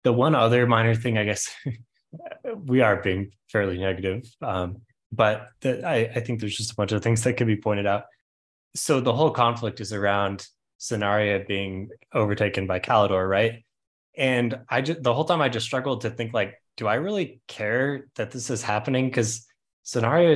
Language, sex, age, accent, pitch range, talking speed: English, male, 20-39, American, 100-120 Hz, 185 wpm